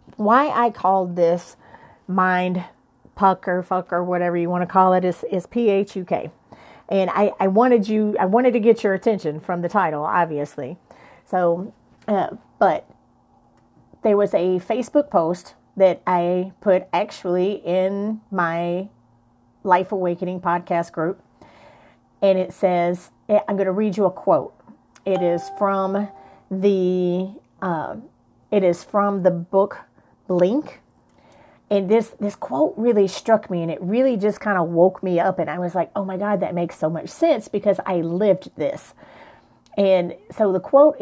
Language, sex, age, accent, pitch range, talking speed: English, female, 30-49, American, 180-205 Hz, 165 wpm